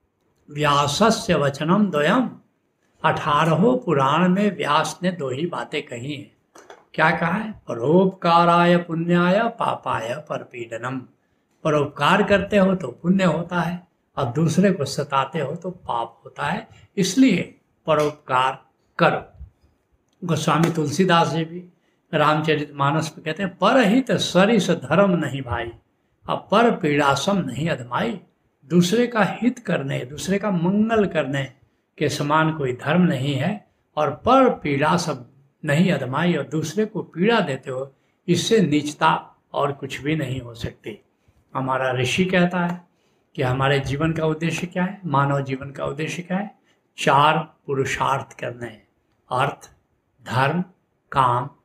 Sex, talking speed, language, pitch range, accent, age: male, 135 wpm, Hindi, 140-185 Hz, native, 70-89